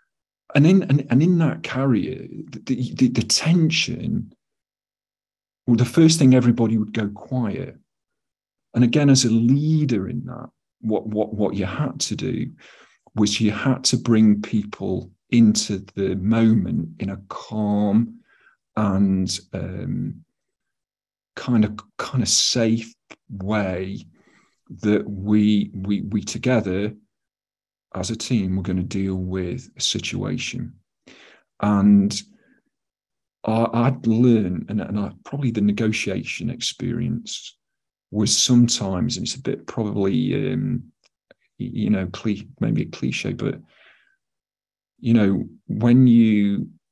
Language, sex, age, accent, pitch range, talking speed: English, male, 40-59, British, 100-120 Hz, 125 wpm